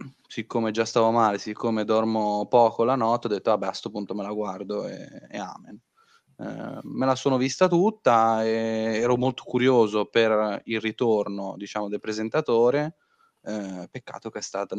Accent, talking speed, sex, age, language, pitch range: native, 175 wpm, male, 10-29, Italian, 110-125 Hz